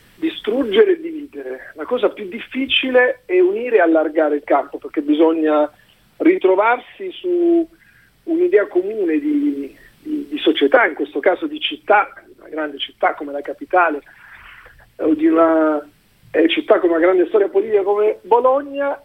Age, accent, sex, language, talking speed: 40-59, native, male, Italian, 150 wpm